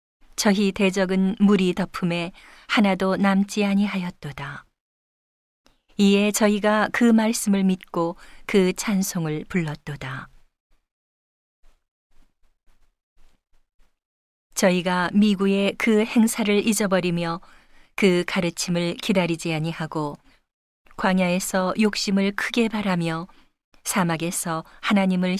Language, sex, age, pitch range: Korean, female, 40-59, 165-205 Hz